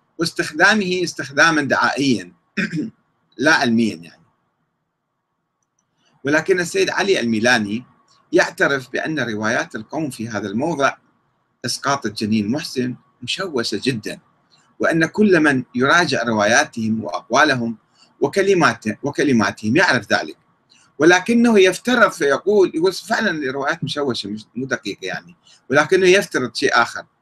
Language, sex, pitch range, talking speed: Arabic, male, 130-195 Hz, 100 wpm